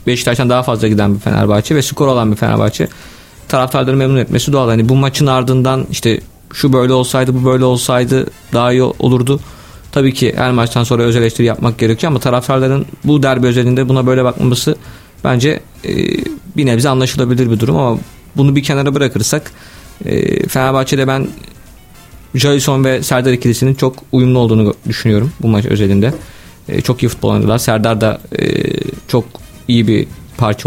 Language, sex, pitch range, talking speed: Turkish, male, 115-130 Hz, 160 wpm